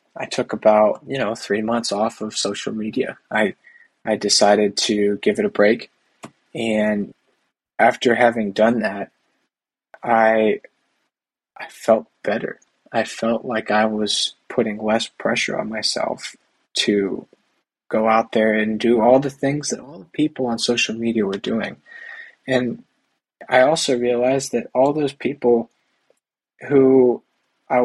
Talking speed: 140 wpm